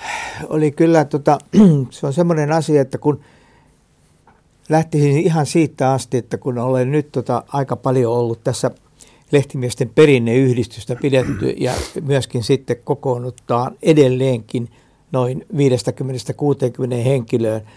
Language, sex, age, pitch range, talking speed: Finnish, male, 60-79, 125-150 Hz, 110 wpm